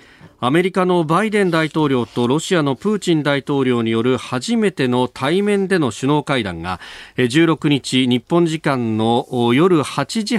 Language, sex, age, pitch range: Japanese, male, 40-59, 115-170 Hz